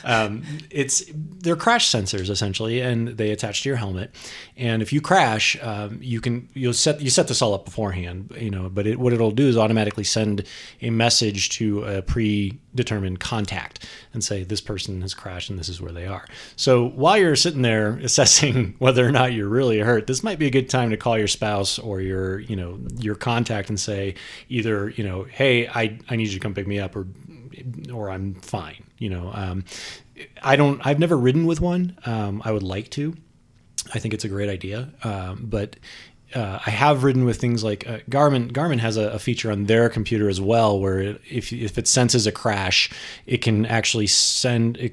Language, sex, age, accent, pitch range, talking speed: English, male, 30-49, American, 100-125 Hz, 210 wpm